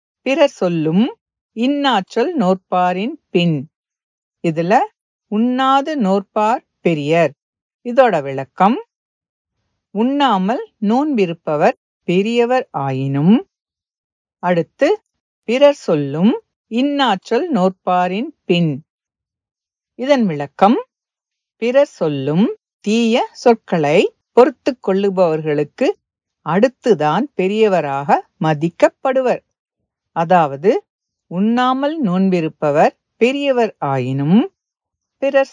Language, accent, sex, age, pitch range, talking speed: English, Indian, female, 50-69, 160-255 Hz, 60 wpm